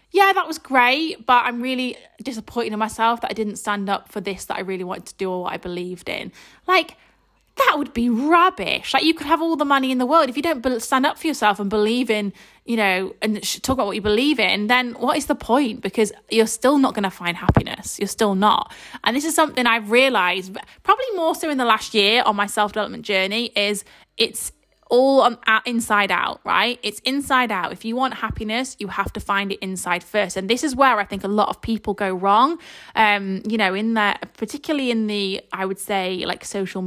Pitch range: 205-265 Hz